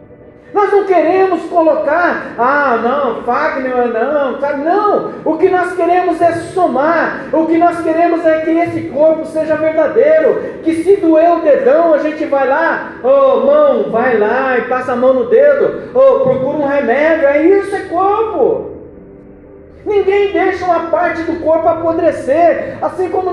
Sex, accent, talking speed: male, Brazilian, 160 wpm